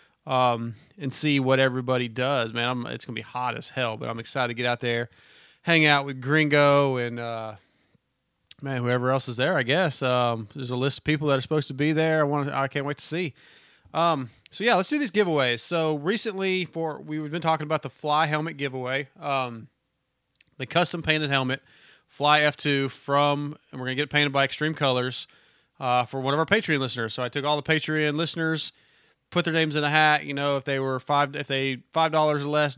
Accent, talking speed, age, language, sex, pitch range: American, 220 wpm, 30-49, English, male, 130-155 Hz